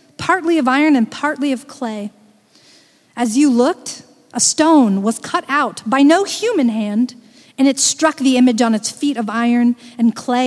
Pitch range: 225-300 Hz